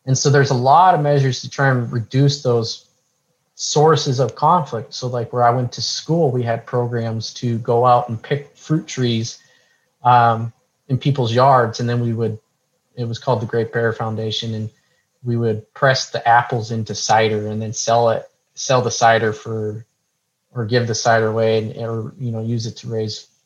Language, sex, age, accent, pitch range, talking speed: English, male, 20-39, American, 115-135 Hz, 195 wpm